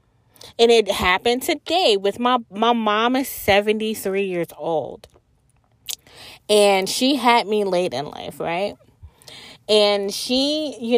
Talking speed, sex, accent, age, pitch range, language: 125 wpm, female, American, 20-39, 180-230 Hz, English